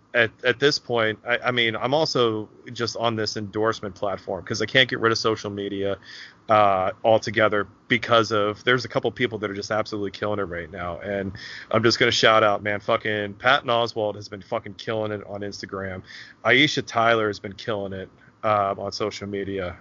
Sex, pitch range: male, 100-115 Hz